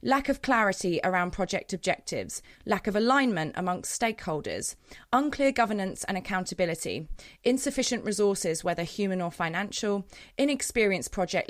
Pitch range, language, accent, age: 180-235 Hz, English, British, 30-49